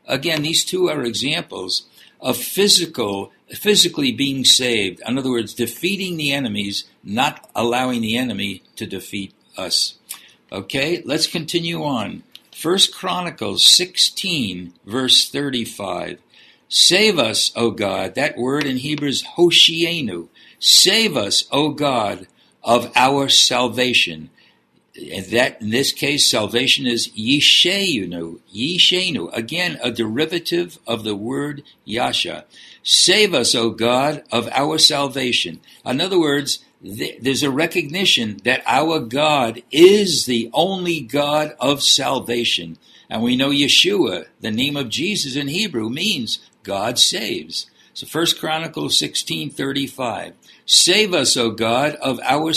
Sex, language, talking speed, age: male, English, 130 wpm, 60-79